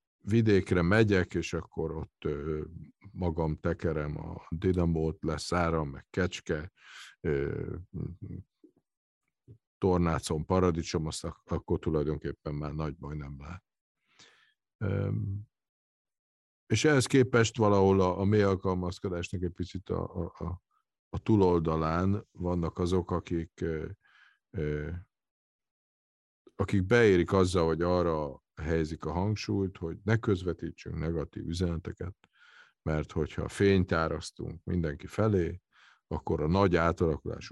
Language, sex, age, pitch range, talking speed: Hungarian, male, 50-69, 80-95 Hz, 100 wpm